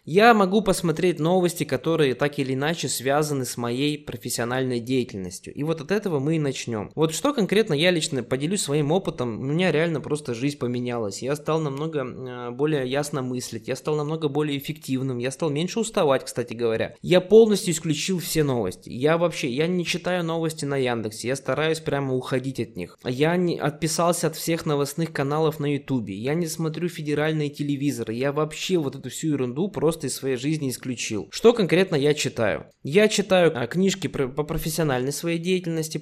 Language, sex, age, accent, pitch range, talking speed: Russian, male, 20-39, native, 130-170 Hz, 180 wpm